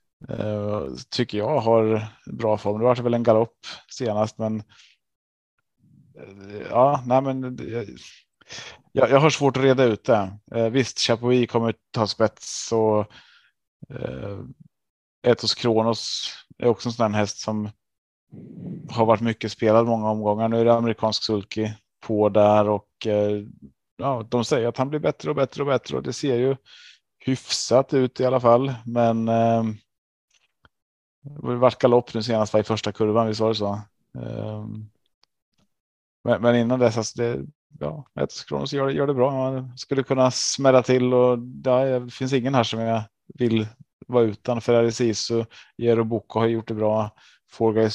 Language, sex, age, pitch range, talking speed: Swedish, male, 30-49, 110-125 Hz, 165 wpm